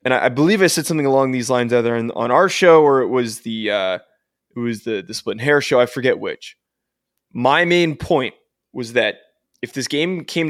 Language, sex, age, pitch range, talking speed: English, male, 20-39, 120-145 Hz, 225 wpm